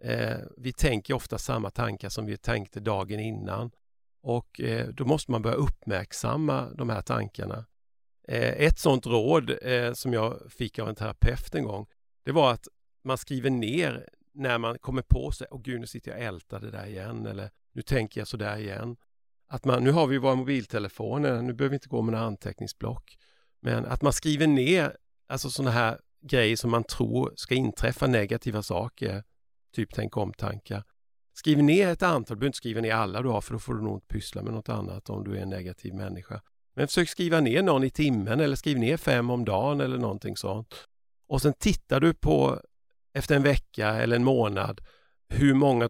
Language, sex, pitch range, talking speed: Swedish, male, 105-130 Hz, 195 wpm